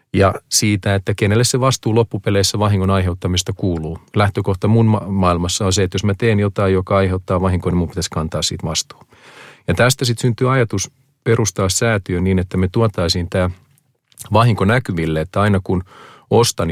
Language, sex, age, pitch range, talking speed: Finnish, male, 40-59, 90-115 Hz, 170 wpm